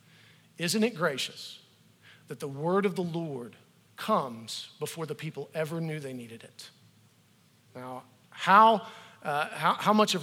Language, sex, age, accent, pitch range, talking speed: English, male, 50-69, American, 150-185 Hz, 145 wpm